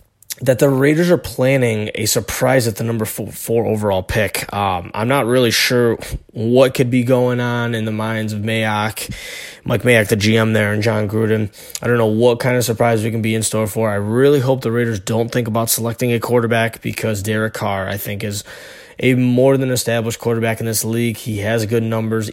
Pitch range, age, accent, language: 110-125 Hz, 20-39, American, English